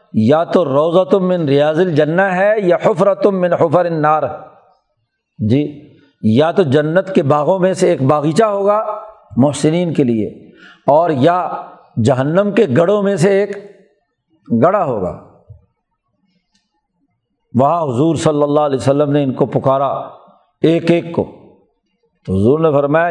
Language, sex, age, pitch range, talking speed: Urdu, male, 50-69, 150-195 Hz, 140 wpm